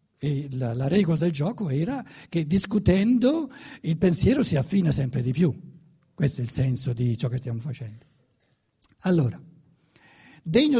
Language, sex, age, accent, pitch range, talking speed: Italian, male, 60-79, native, 140-210 Hz, 150 wpm